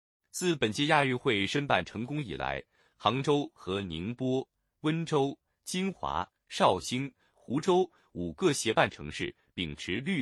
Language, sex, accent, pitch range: Chinese, male, native, 95-155 Hz